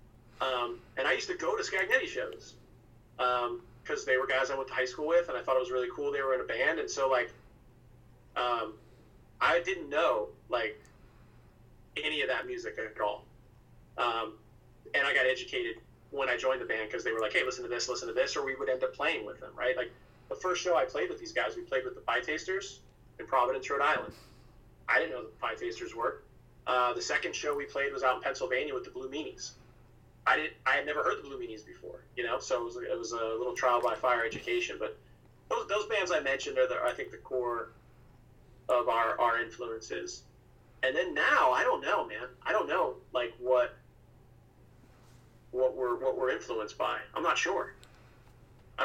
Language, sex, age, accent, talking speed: English, male, 30-49, American, 220 wpm